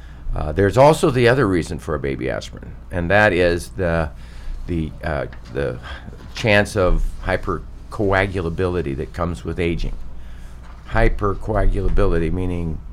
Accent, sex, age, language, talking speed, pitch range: American, male, 50-69, English, 120 wpm, 75-100 Hz